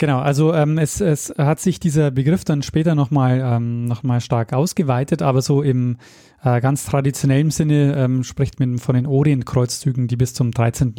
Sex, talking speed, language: male, 180 wpm, German